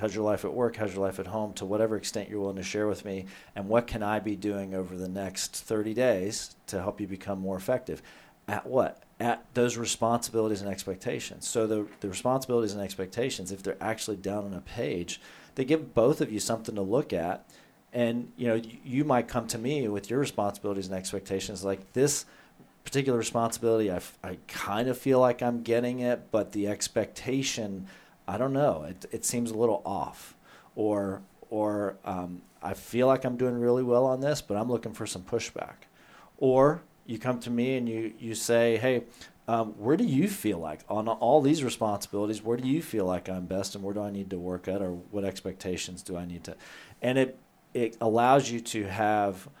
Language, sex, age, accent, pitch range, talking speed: English, male, 40-59, American, 100-120 Hz, 205 wpm